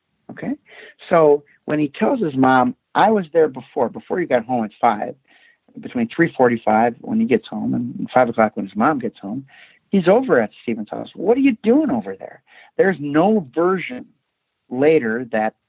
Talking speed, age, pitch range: 190 wpm, 60-79, 115-165 Hz